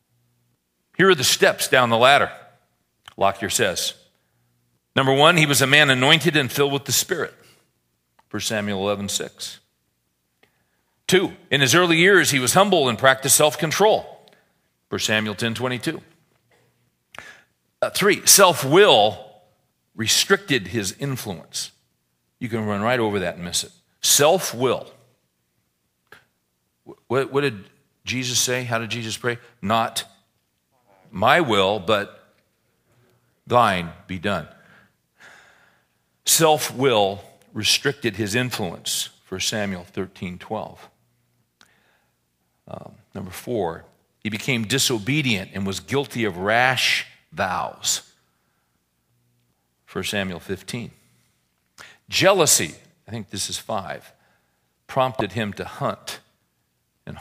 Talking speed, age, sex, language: 110 wpm, 40-59, male, English